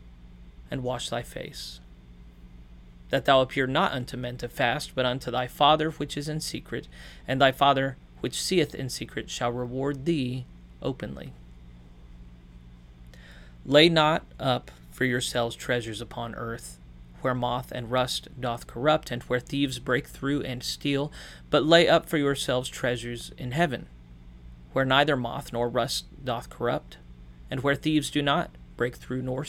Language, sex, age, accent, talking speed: English, male, 30-49, American, 155 wpm